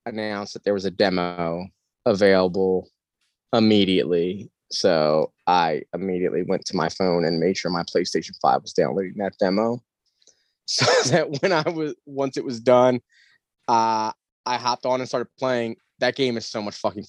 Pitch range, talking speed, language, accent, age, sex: 110-135 Hz, 165 wpm, English, American, 20-39, male